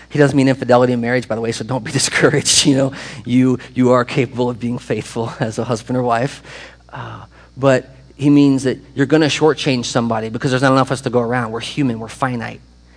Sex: male